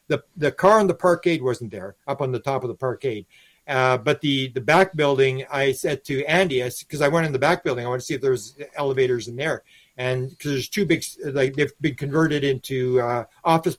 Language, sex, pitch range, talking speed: English, male, 130-165 Hz, 240 wpm